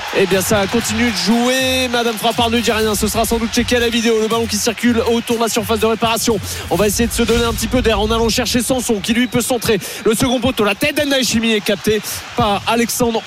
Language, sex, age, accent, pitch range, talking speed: French, male, 30-49, French, 185-230 Hz, 260 wpm